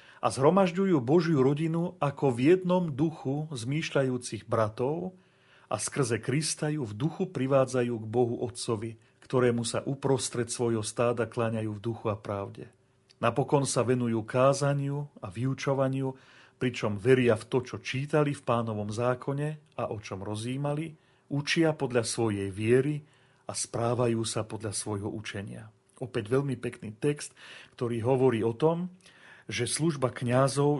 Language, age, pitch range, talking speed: Slovak, 40-59, 115-145 Hz, 135 wpm